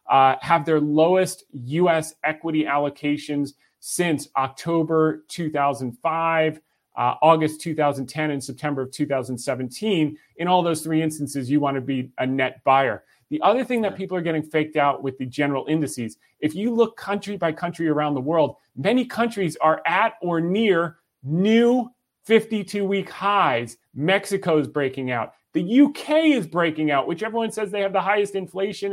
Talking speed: 160 wpm